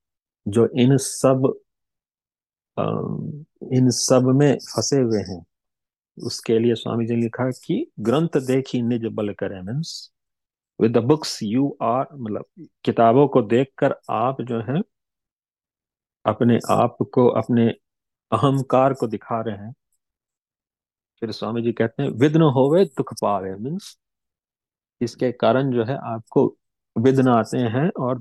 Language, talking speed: Hindi, 135 wpm